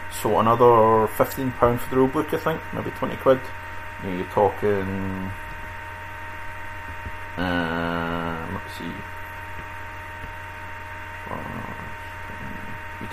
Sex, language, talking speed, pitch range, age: male, English, 80 wpm, 90-105 Hz, 30-49